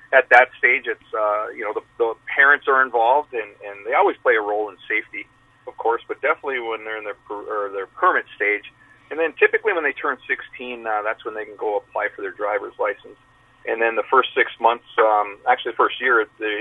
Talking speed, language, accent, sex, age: 230 wpm, English, American, male, 40-59